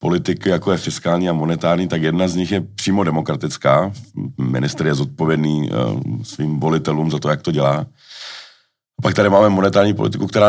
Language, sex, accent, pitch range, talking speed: Czech, male, native, 75-90 Hz, 165 wpm